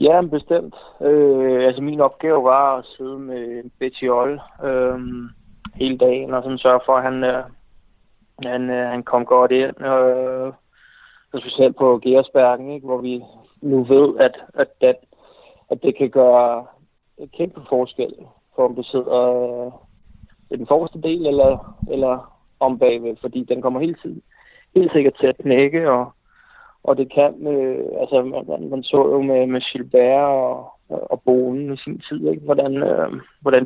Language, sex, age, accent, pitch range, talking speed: Danish, male, 20-39, native, 125-140 Hz, 160 wpm